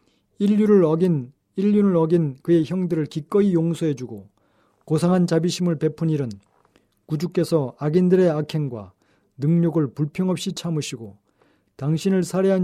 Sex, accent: male, native